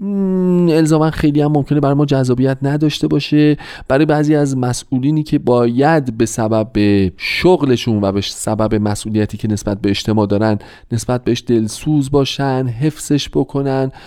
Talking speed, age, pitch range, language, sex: 140 wpm, 40-59, 105-150 Hz, Persian, male